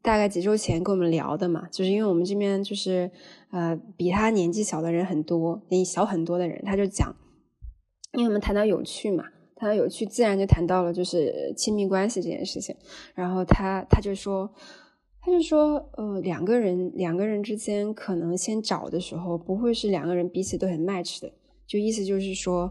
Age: 20-39